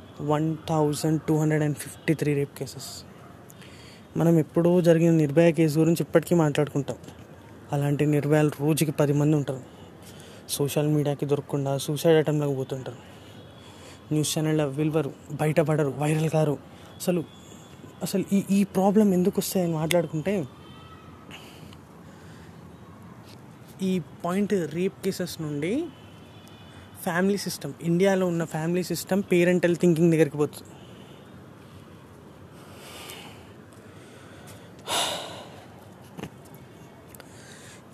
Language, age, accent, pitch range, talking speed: Telugu, 20-39, native, 140-170 Hz, 90 wpm